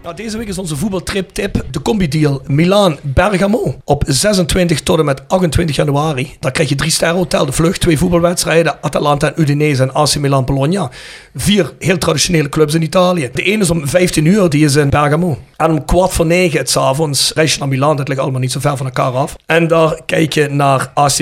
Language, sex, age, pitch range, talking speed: Dutch, male, 40-59, 140-170 Hz, 210 wpm